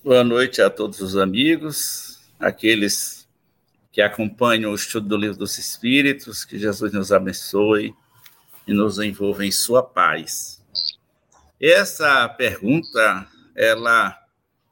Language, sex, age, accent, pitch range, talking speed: Portuguese, male, 60-79, Brazilian, 115-190 Hz, 115 wpm